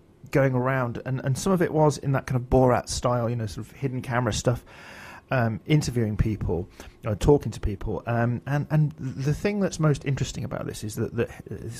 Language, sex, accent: English, male, British